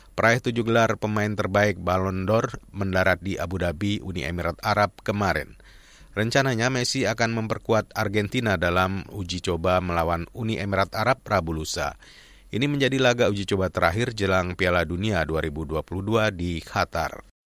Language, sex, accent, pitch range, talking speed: Indonesian, male, native, 90-115 Hz, 135 wpm